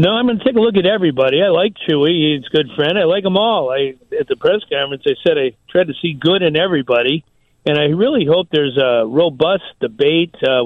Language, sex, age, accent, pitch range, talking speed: English, male, 50-69, American, 135-185 Hz, 235 wpm